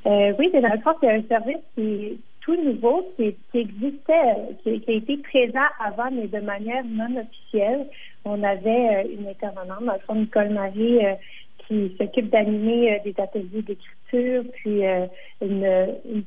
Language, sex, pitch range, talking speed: French, female, 195-225 Hz, 180 wpm